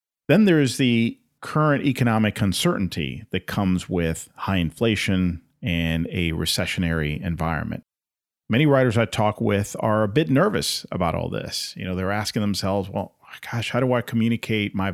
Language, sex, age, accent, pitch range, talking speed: English, male, 40-59, American, 90-115 Hz, 160 wpm